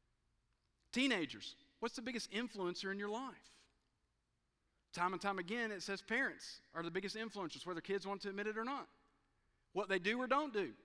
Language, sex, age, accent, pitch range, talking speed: English, male, 50-69, American, 160-220 Hz, 185 wpm